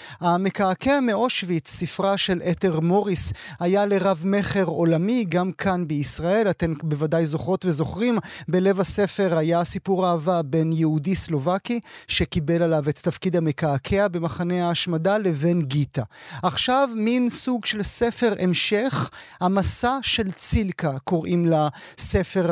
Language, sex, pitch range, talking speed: Hebrew, male, 170-215 Hz, 120 wpm